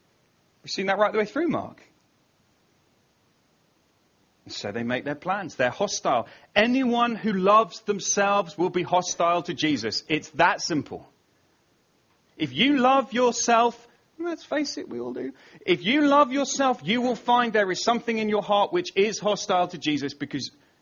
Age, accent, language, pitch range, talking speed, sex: 30-49, British, English, 155-225 Hz, 160 wpm, male